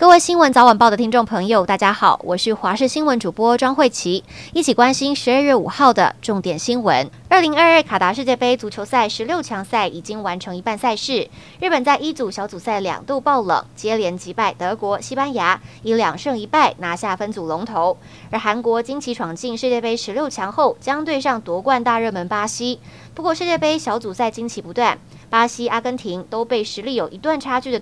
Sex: female